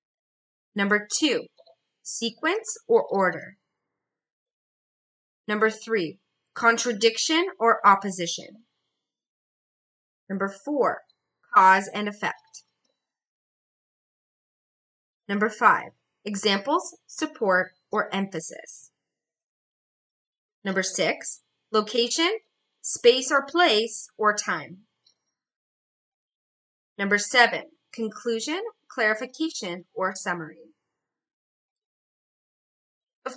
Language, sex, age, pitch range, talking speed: English, female, 30-49, 200-285 Hz, 65 wpm